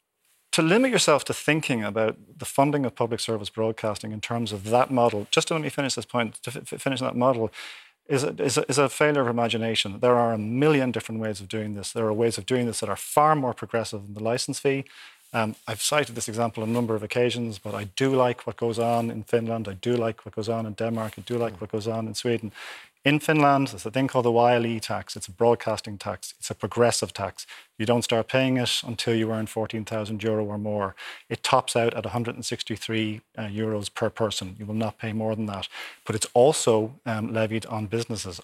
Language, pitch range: English, 110-120 Hz